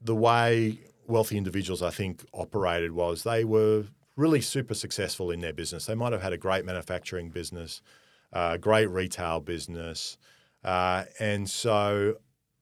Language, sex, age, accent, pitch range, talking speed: English, male, 40-59, Australian, 85-110 Hz, 145 wpm